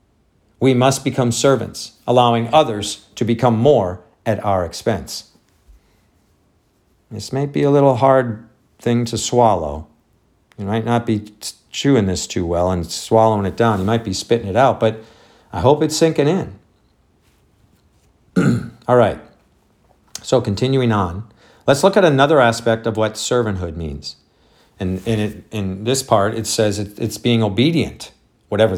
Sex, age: male, 50-69